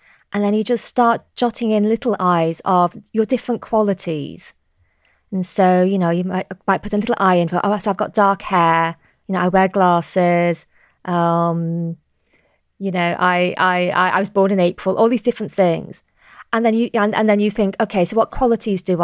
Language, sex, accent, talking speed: English, female, British, 200 wpm